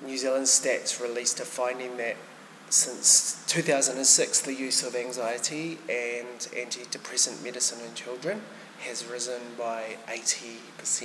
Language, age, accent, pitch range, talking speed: English, 20-39, Australian, 120-145 Hz, 120 wpm